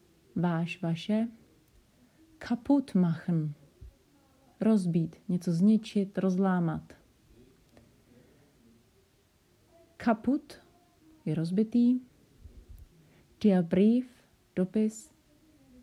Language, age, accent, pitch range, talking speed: Czech, 30-49, native, 165-220 Hz, 55 wpm